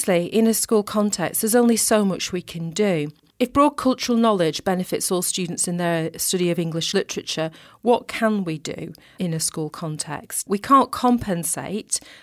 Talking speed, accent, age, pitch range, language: 170 wpm, British, 40-59, 170-210 Hz, English